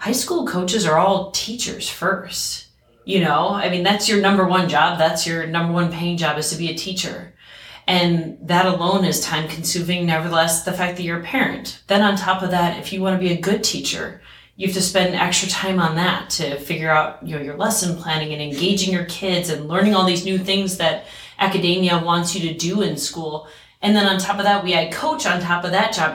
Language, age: English, 30-49